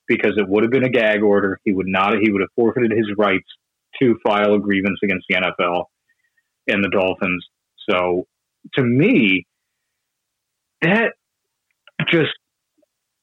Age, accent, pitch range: 40-59, American, 100-135 Hz